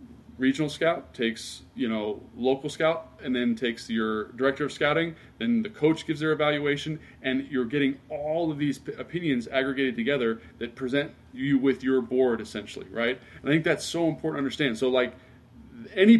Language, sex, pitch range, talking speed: English, male, 120-155 Hz, 180 wpm